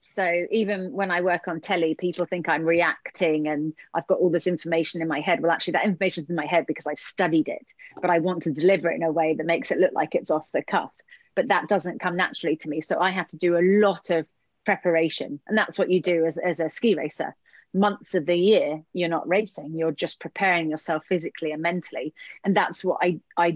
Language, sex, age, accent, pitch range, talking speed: English, female, 30-49, British, 165-200 Hz, 240 wpm